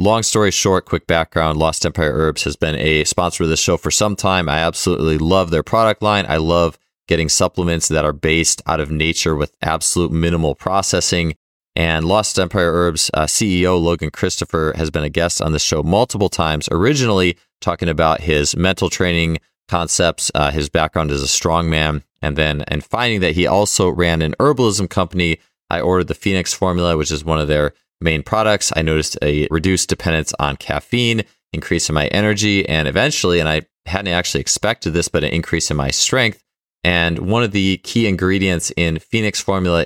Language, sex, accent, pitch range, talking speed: English, male, American, 80-95 Hz, 190 wpm